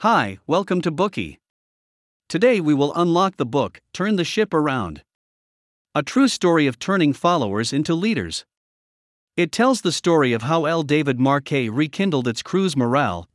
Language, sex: English, male